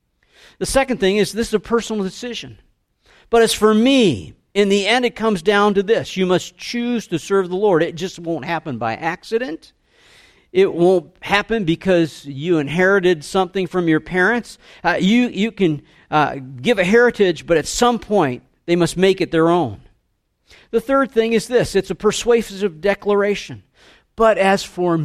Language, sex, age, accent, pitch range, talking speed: English, male, 50-69, American, 150-210 Hz, 175 wpm